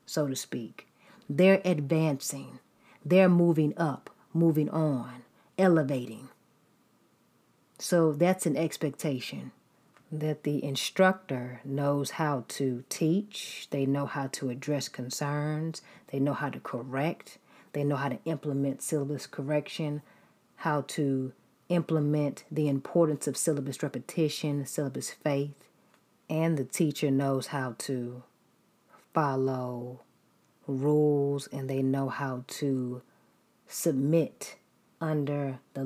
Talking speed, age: 110 wpm, 40-59